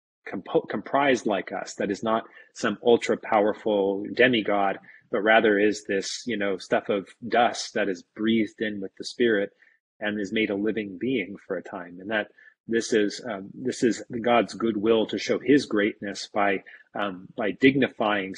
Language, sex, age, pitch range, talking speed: English, male, 30-49, 100-115 Hz, 175 wpm